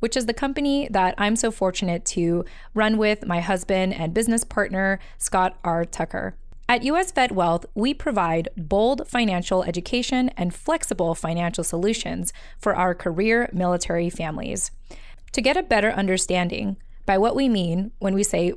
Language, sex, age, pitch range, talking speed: English, female, 20-39, 180-235 Hz, 160 wpm